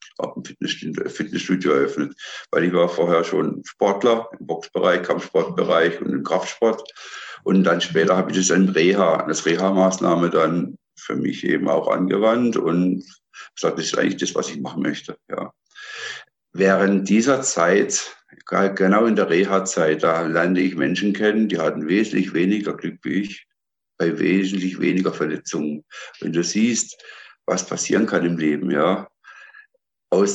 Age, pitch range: 60-79, 95-110 Hz